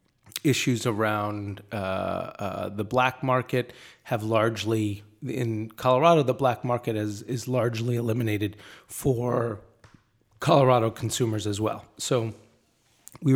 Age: 30-49